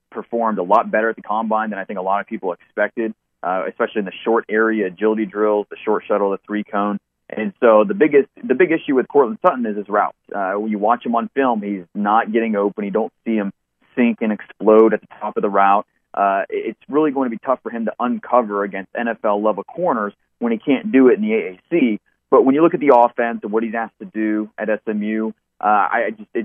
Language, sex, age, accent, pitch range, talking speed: English, male, 30-49, American, 105-115 Hz, 245 wpm